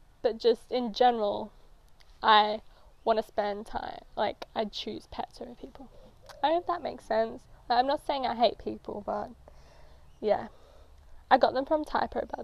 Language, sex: English, female